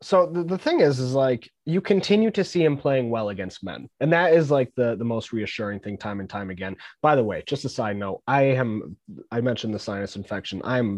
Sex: male